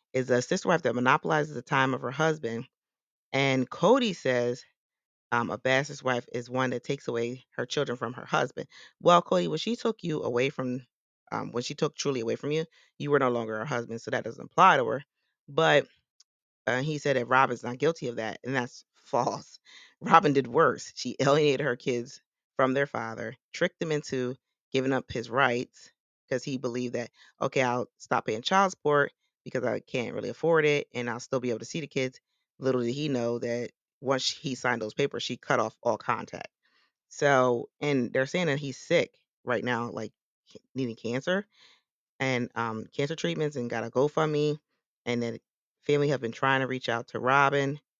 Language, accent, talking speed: English, American, 195 wpm